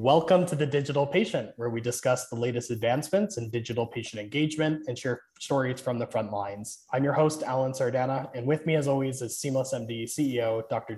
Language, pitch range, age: English, 115-145 Hz, 20-39